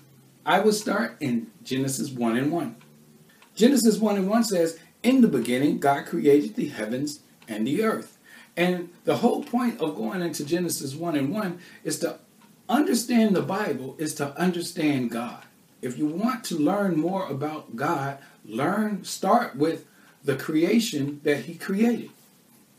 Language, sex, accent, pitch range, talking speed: English, male, American, 140-195 Hz, 155 wpm